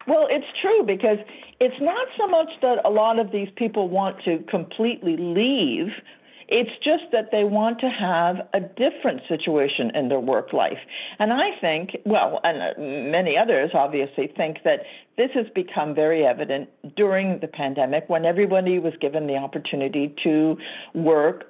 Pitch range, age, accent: 165-250 Hz, 60-79, American